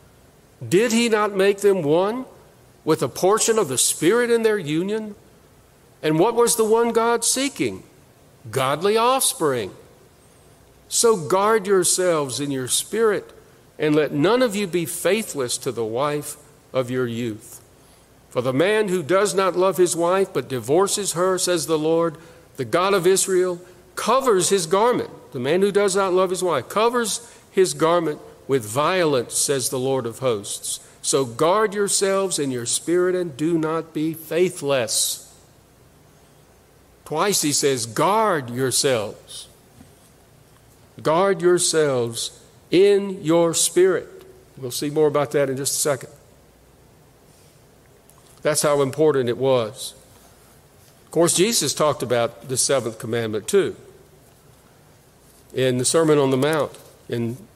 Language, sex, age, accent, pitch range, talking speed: English, male, 50-69, American, 140-200 Hz, 140 wpm